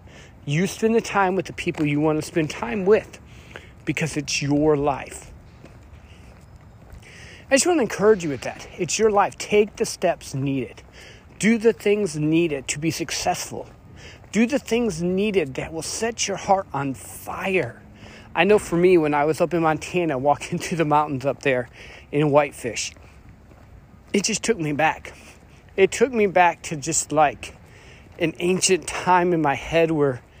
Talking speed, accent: 170 wpm, American